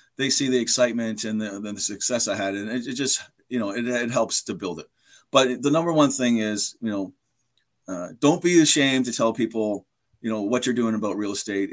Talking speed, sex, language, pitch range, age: 225 wpm, male, English, 110-155 Hz, 40-59